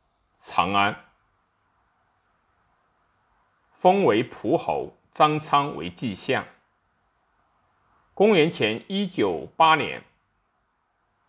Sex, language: male, Chinese